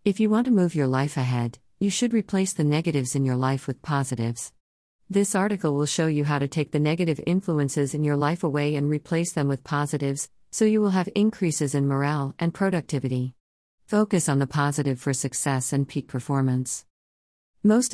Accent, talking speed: American, 190 wpm